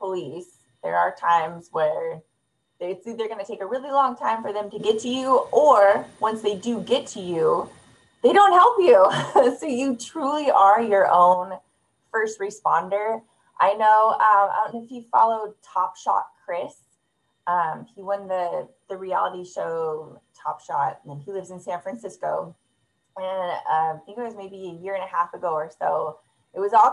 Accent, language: American, English